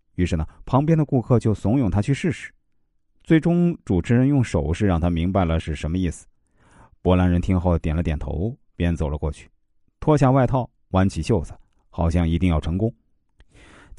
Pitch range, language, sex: 85-135 Hz, Chinese, male